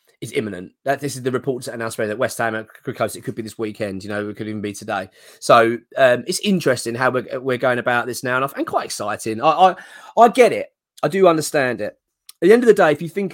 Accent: British